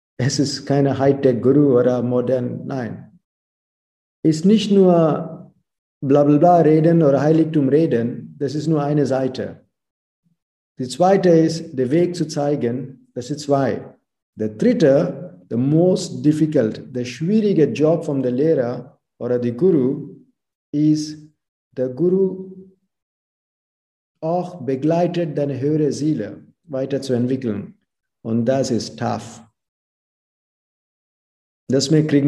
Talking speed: 115 wpm